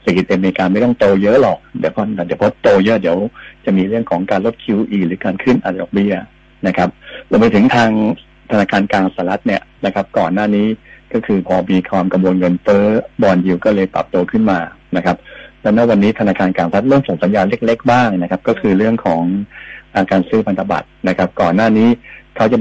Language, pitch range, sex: Thai, 90-105 Hz, male